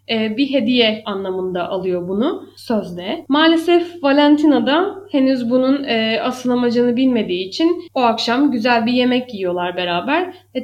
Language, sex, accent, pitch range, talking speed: Turkish, female, native, 220-280 Hz, 125 wpm